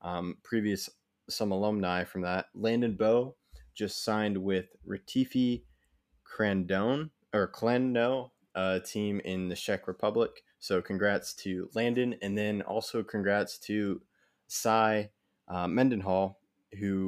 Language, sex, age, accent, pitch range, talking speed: English, male, 20-39, American, 90-110 Hz, 115 wpm